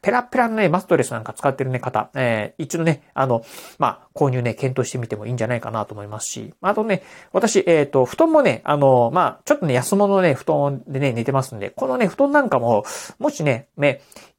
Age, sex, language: 40-59, male, Japanese